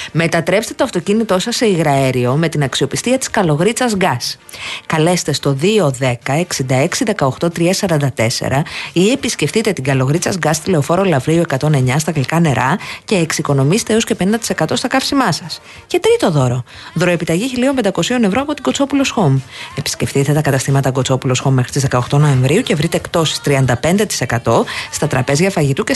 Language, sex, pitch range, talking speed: Greek, female, 135-205 Hz, 150 wpm